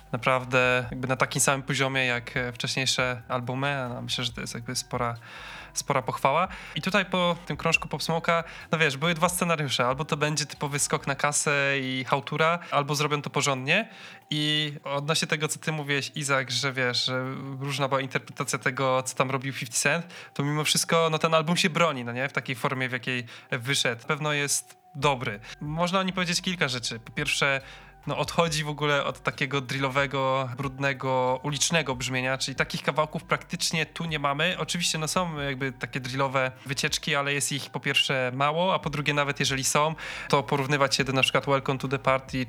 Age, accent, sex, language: 20-39, native, male, Polish